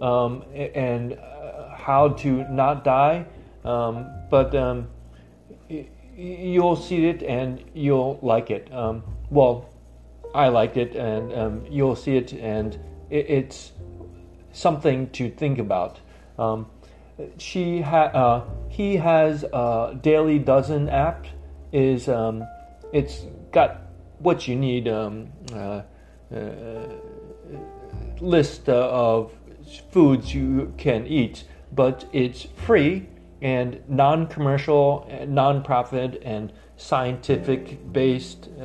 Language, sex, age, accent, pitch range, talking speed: English, male, 40-59, American, 105-145 Hz, 110 wpm